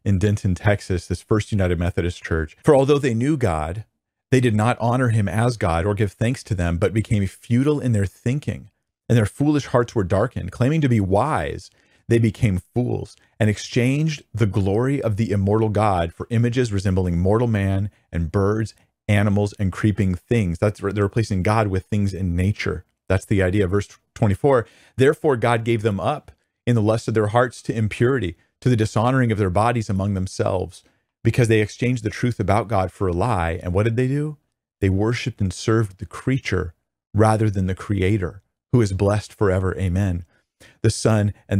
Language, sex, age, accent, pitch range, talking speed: English, male, 40-59, American, 95-120 Hz, 190 wpm